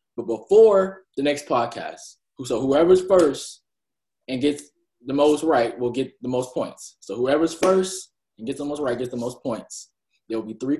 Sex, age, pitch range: male, 20-39, 120-160 Hz